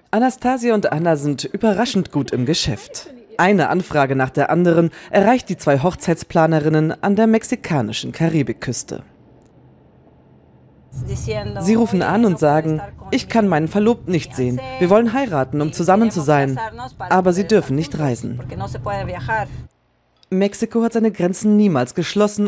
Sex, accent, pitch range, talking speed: female, German, 145-220 Hz, 135 wpm